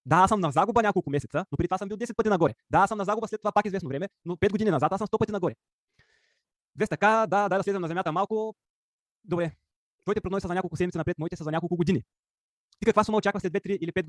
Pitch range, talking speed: 155-195 Hz, 275 wpm